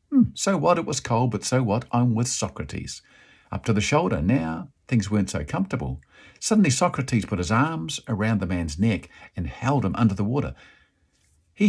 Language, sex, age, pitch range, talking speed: English, male, 50-69, 100-145 Hz, 185 wpm